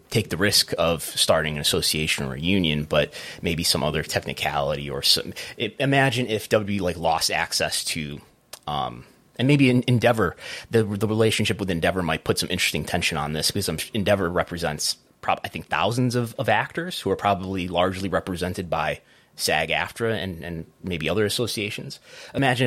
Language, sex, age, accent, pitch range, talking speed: English, male, 30-49, American, 80-100 Hz, 170 wpm